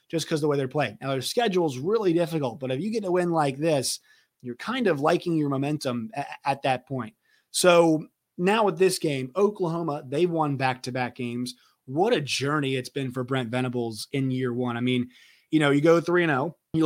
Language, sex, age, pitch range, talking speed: English, male, 30-49, 125-160 Hz, 215 wpm